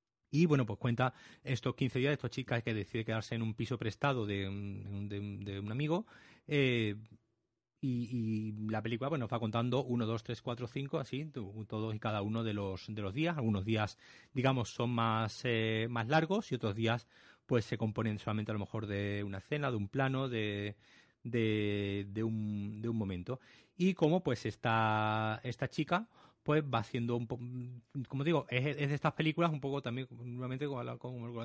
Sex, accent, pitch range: male, Spanish, 110-135 Hz